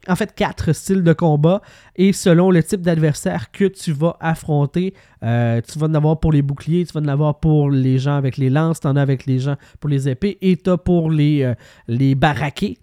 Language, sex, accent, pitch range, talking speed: French, male, Canadian, 130-165 Hz, 235 wpm